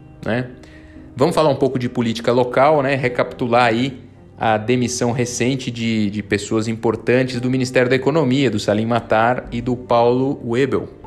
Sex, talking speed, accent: male, 155 wpm, Brazilian